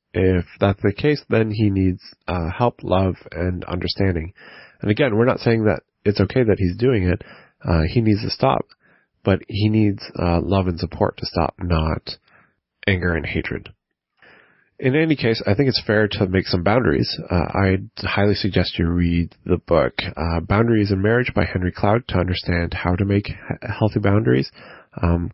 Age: 30-49